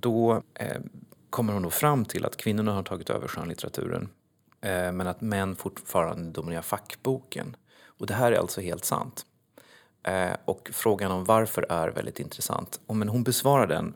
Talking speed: 170 wpm